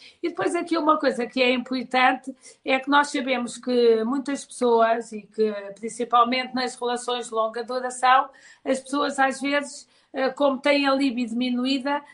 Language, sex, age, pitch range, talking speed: Portuguese, female, 50-69, 250-285 Hz, 160 wpm